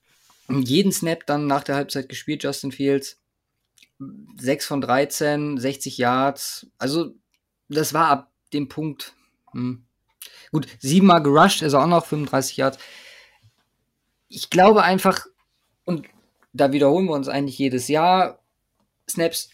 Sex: male